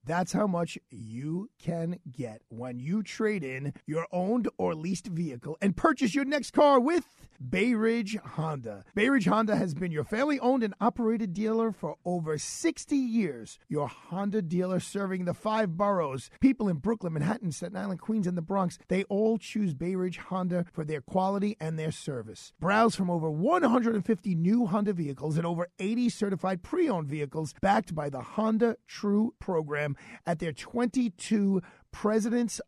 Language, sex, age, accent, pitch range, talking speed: English, male, 40-59, American, 160-220 Hz, 165 wpm